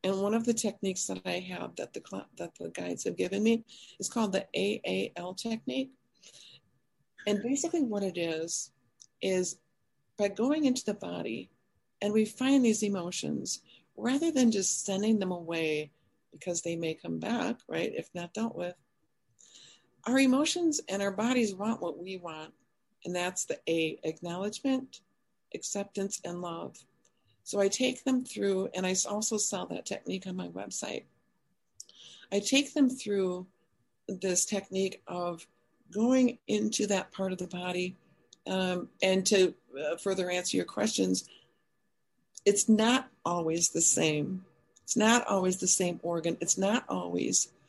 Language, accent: English, American